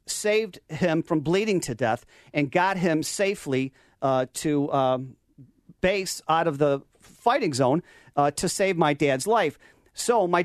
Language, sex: English, male